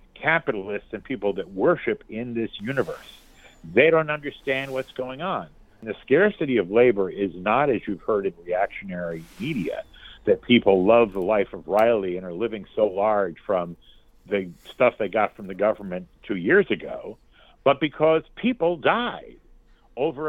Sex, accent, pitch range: male, American, 110-160 Hz